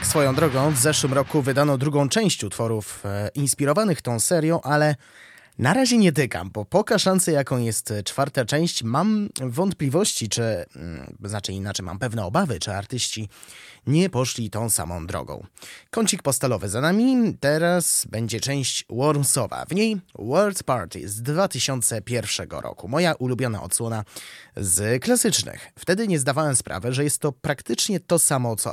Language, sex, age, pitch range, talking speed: Polish, male, 20-39, 110-155 Hz, 145 wpm